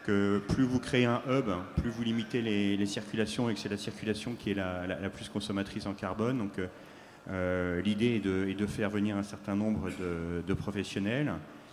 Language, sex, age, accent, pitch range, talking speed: French, male, 40-59, French, 95-115 Hz, 210 wpm